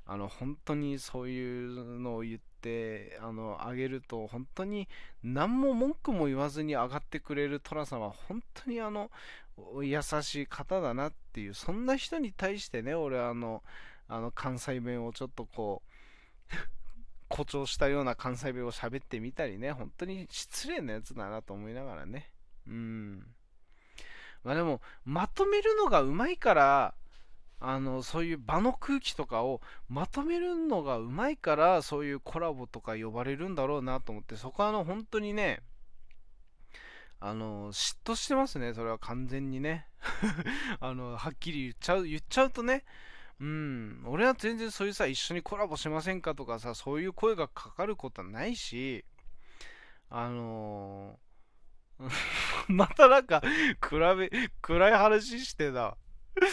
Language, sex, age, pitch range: Japanese, male, 20-39, 120-190 Hz